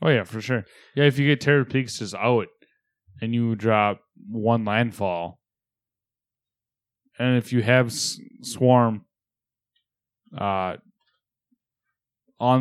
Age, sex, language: 10-29, male, English